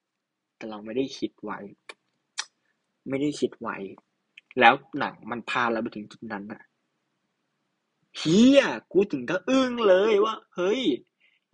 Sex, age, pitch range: male, 20-39, 145-235 Hz